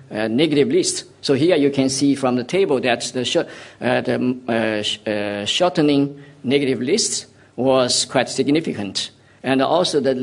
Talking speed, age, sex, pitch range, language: 165 wpm, 50-69, male, 120-140 Hz, English